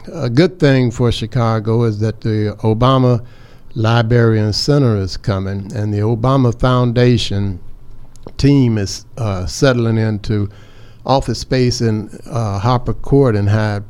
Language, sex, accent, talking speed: English, male, American, 130 wpm